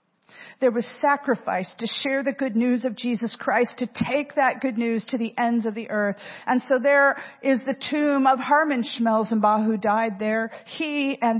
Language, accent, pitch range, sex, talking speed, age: English, American, 195-265 Hz, female, 190 wpm, 50-69